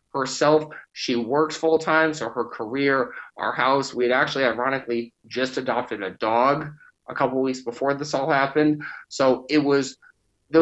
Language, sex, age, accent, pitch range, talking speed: English, male, 20-39, American, 120-145 Hz, 160 wpm